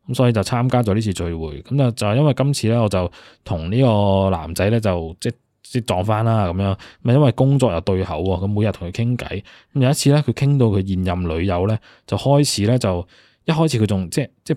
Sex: male